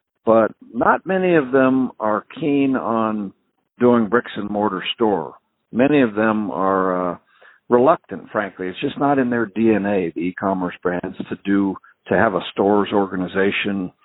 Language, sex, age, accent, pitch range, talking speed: English, male, 60-79, American, 95-115 Hz, 155 wpm